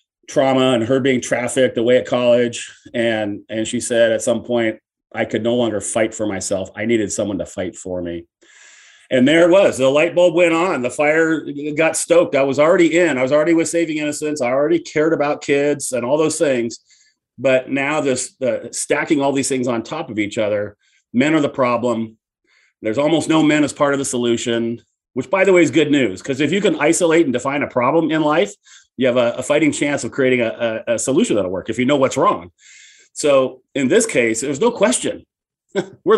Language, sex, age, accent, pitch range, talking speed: English, male, 40-59, American, 115-155 Hz, 215 wpm